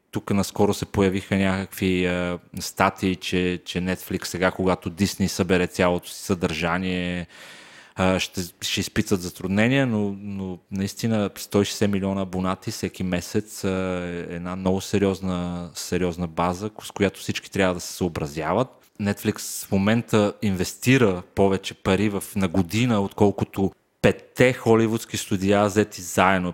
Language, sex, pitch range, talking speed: Bulgarian, male, 90-105 Hz, 130 wpm